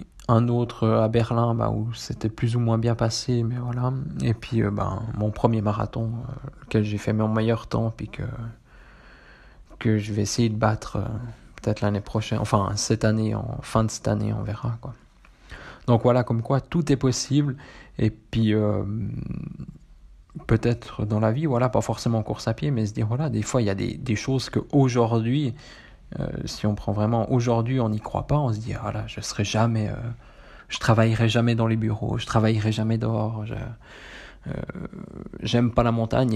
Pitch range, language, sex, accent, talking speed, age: 110-120 Hz, French, male, French, 200 wpm, 20-39